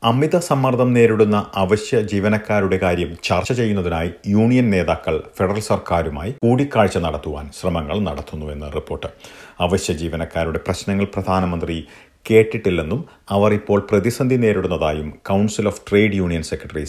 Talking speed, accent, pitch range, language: 110 wpm, native, 85-115 Hz, Malayalam